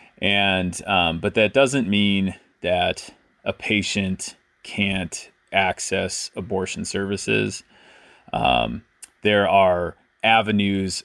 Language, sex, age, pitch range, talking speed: English, male, 30-49, 95-125 Hz, 90 wpm